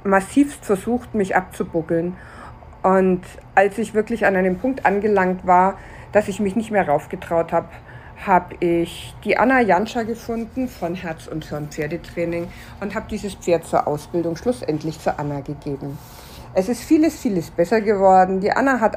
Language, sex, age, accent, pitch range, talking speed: German, female, 50-69, German, 170-215 Hz, 160 wpm